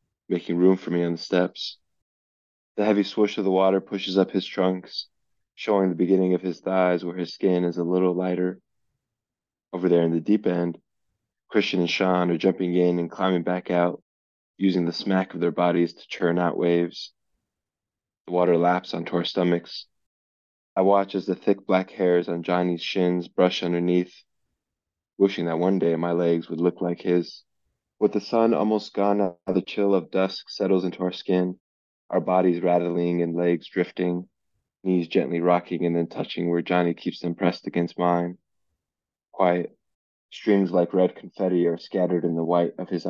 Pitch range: 85-95 Hz